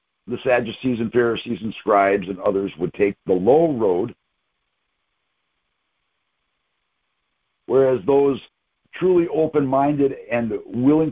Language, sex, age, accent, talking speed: English, male, 60-79, American, 105 wpm